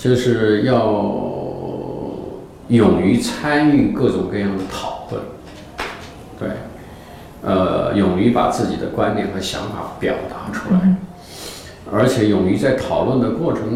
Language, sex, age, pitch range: Chinese, male, 50-69, 100-130 Hz